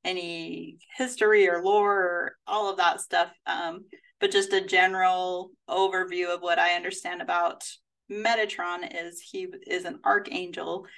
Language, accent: English, American